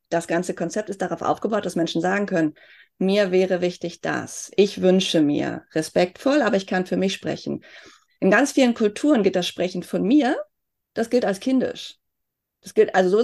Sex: female